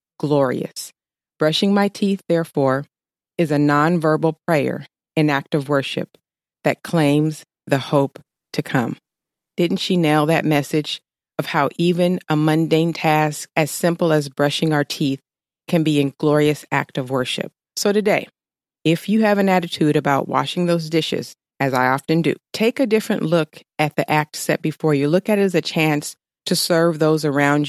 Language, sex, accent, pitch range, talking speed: English, female, American, 145-175 Hz, 170 wpm